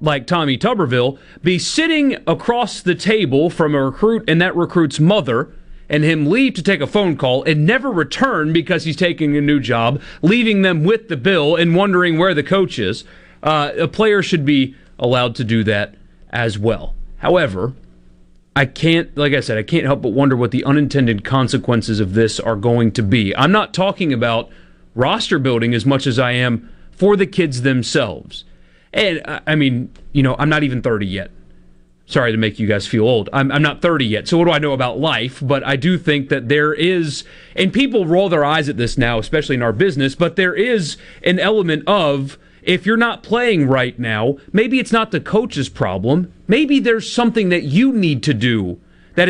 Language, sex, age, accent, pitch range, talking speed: English, male, 40-59, American, 125-180 Hz, 200 wpm